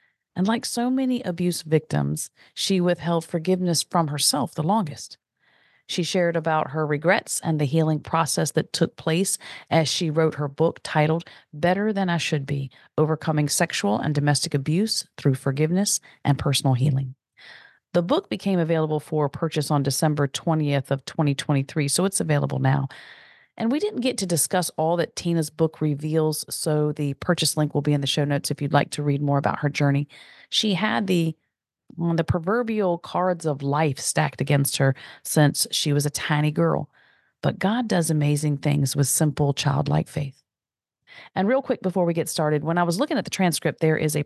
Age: 40-59